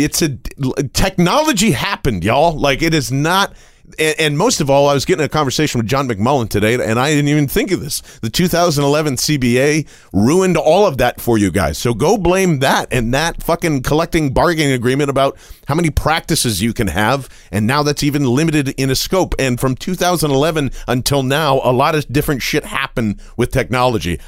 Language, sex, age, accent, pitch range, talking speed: English, male, 40-59, American, 120-155 Hz, 195 wpm